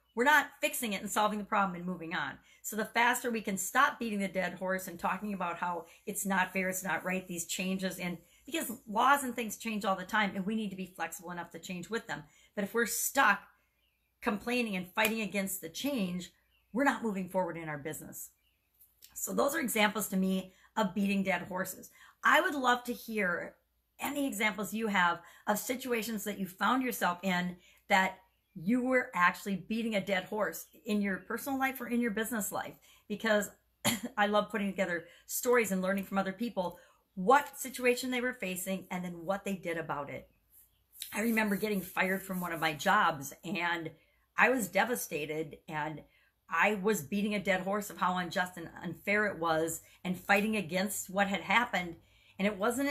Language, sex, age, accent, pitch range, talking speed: English, female, 40-59, American, 180-225 Hz, 195 wpm